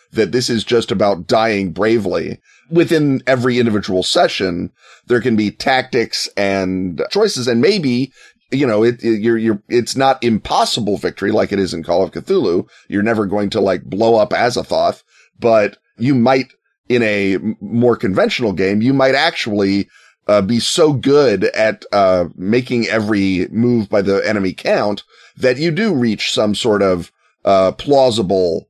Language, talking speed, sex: English, 165 wpm, male